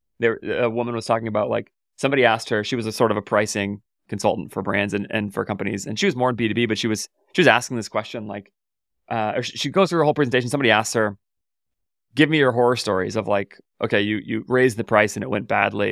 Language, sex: English, male